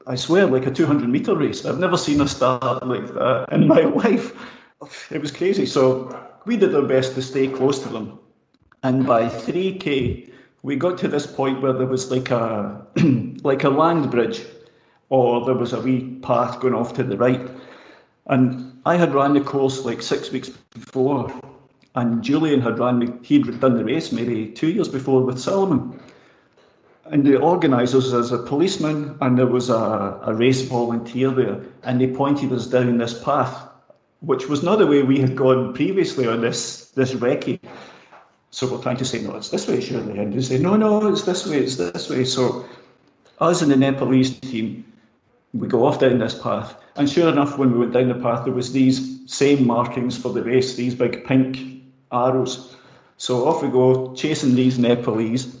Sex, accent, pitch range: male, British, 120-135 Hz